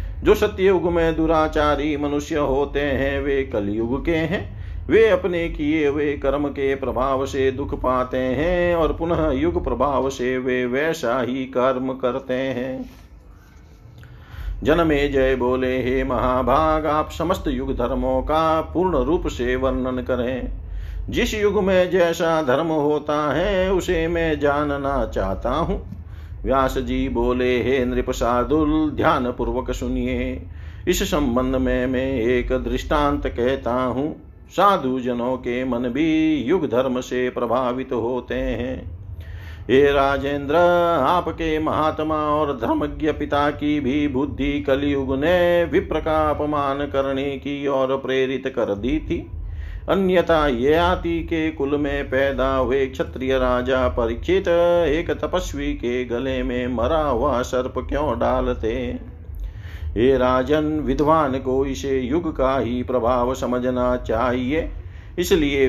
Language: Hindi